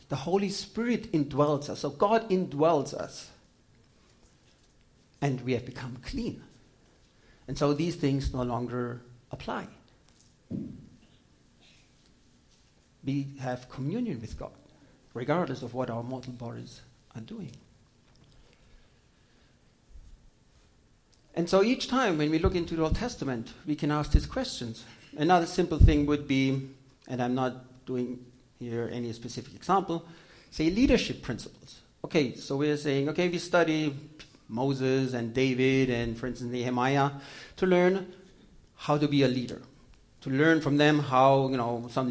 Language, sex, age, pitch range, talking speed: English, male, 60-79, 125-160 Hz, 135 wpm